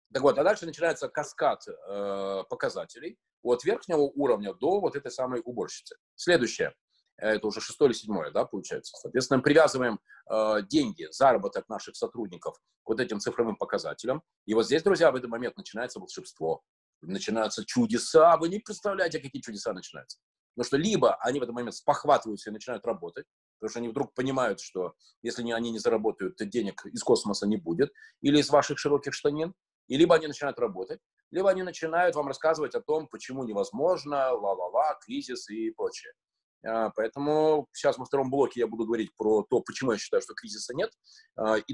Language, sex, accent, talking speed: Russian, male, native, 175 wpm